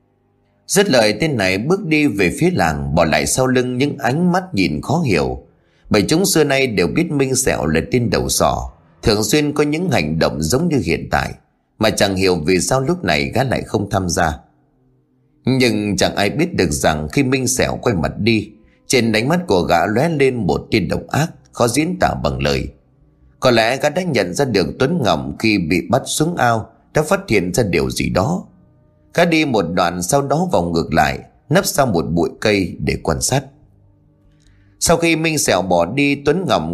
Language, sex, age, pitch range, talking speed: Vietnamese, male, 30-49, 85-140 Hz, 205 wpm